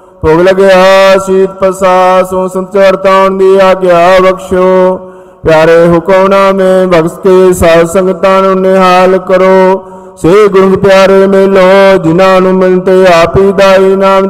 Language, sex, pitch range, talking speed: Punjabi, male, 185-195 Hz, 125 wpm